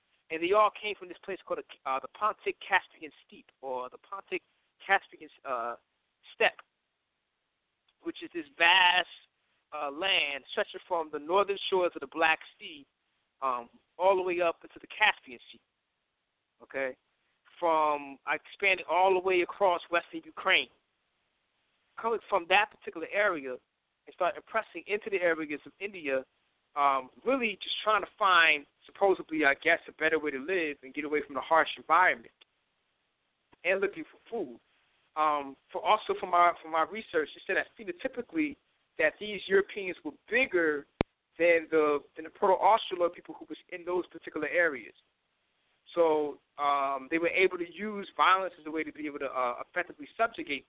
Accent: American